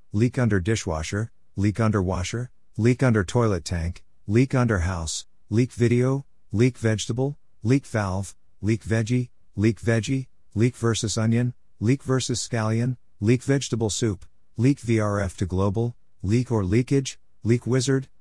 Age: 50-69